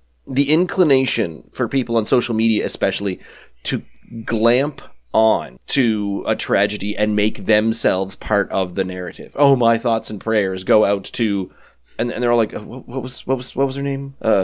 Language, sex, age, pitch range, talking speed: English, male, 30-49, 110-160 Hz, 185 wpm